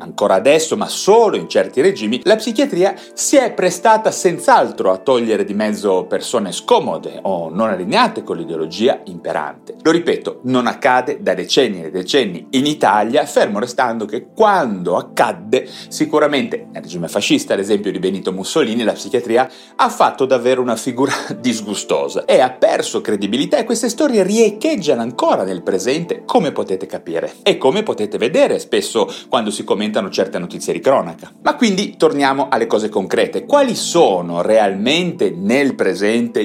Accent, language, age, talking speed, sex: native, Italian, 30-49, 155 wpm, male